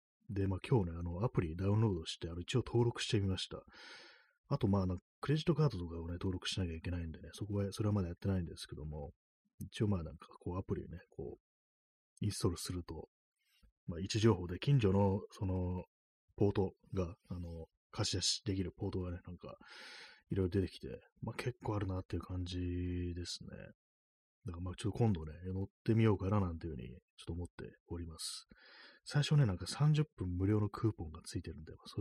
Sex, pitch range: male, 85-105 Hz